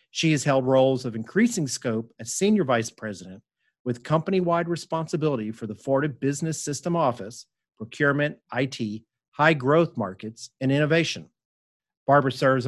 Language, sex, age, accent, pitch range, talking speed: English, male, 40-59, American, 120-155 Hz, 135 wpm